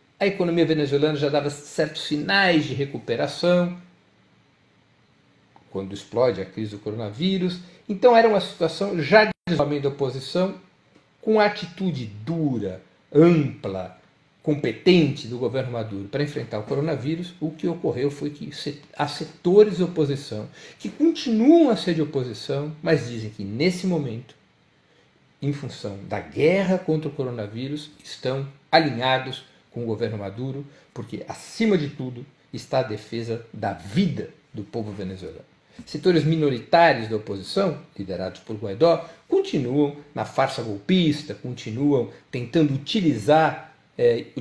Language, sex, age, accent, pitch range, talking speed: Portuguese, male, 60-79, Brazilian, 125-165 Hz, 130 wpm